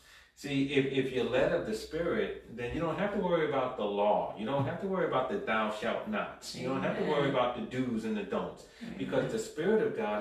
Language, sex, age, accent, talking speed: English, male, 40-59, American, 255 wpm